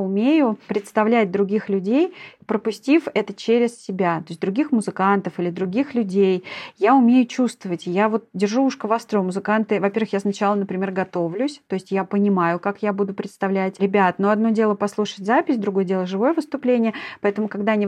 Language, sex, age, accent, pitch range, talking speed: Russian, female, 30-49, native, 195-230 Hz, 170 wpm